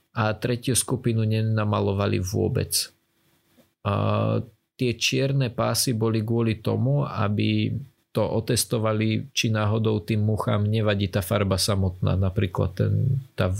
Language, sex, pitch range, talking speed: Slovak, male, 100-120 Hz, 115 wpm